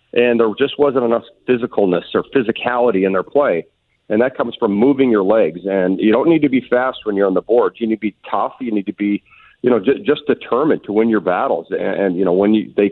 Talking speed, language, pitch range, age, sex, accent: 255 wpm, English, 100-130 Hz, 40-59, male, American